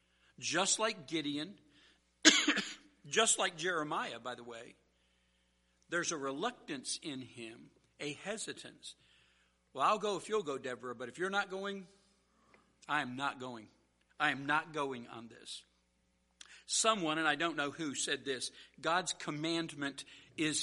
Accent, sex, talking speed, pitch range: American, male, 145 wpm, 145-230 Hz